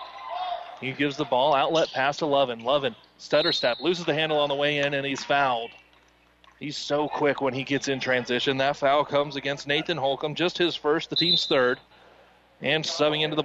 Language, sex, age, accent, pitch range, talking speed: English, male, 30-49, American, 140-175 Hz, 200 wpm